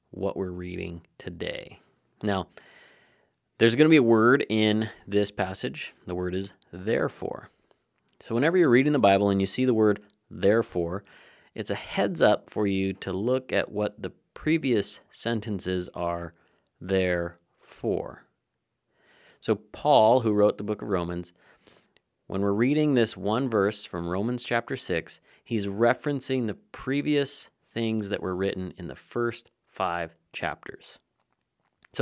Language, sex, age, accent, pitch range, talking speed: English, male, 30-49, American, 90-115 Hz, 145 wpm